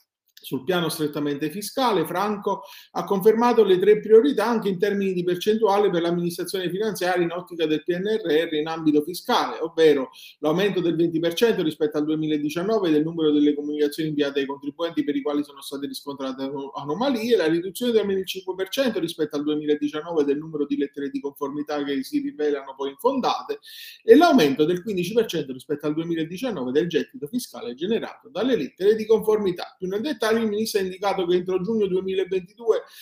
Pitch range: 155-215 Hz